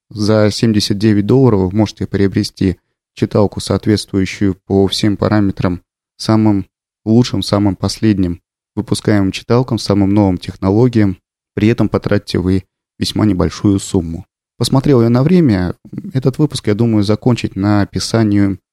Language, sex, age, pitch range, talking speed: Russian, male, 30-49, 95-115 Hz, 120 wpm